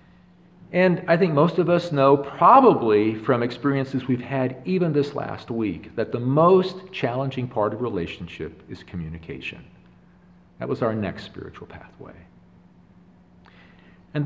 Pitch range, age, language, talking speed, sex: 90-140 Hz, 50-69, English, 135 wpm, male